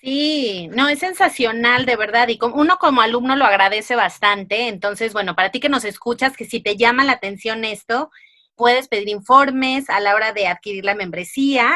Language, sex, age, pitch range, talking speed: Spanish, female, 30-49, 215-275 Hz, 195 wpm